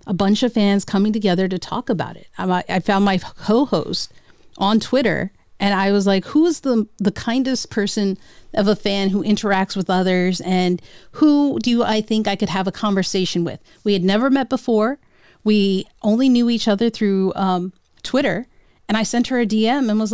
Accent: American